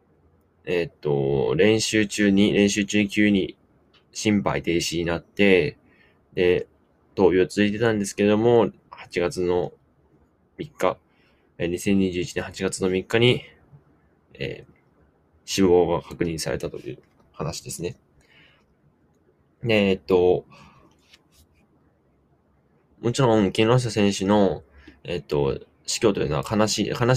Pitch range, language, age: 90-110 Hz, Japanese, 20-39